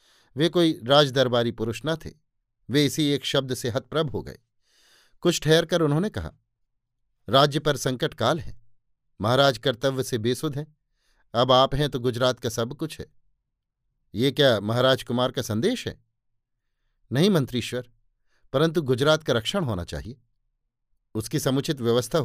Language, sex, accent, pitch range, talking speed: Hindi, male, native, 115-150 Hz, 150 wpm